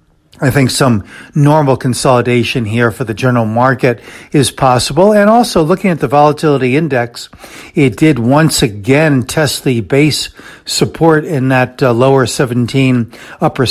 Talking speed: 145 wpm